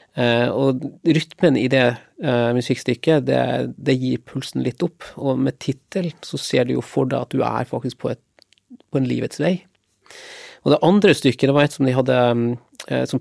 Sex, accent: male, Swedish